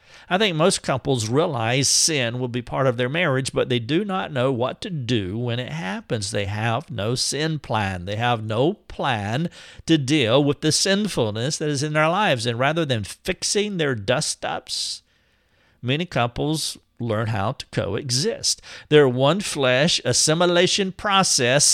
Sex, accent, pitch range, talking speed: male, American, 125-170 Hz, 160 wpm